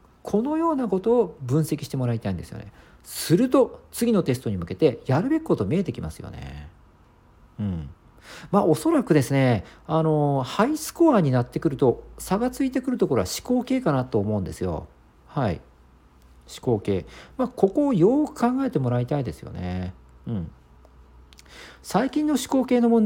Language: Japanese